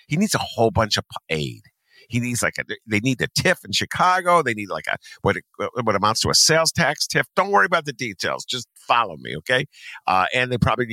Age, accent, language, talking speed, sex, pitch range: 50-69, American, English, 235 wpm, male, 115-190 Hz